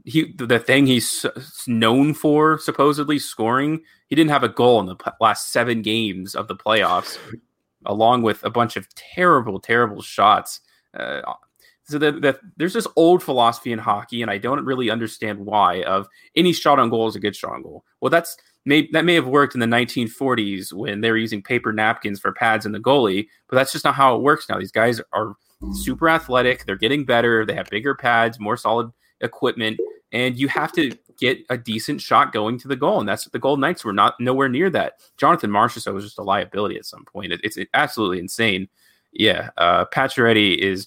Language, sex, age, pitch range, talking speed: English, male, 20-39, 110-140 Hz, 205 wpm